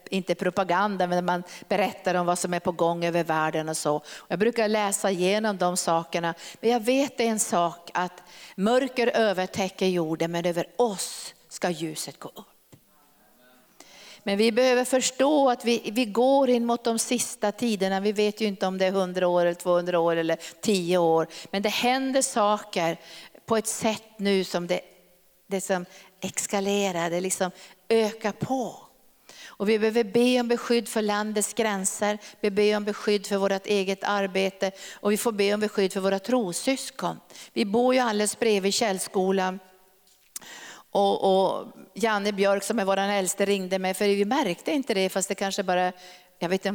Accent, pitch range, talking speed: native, 180-220 Hz, 175 wpm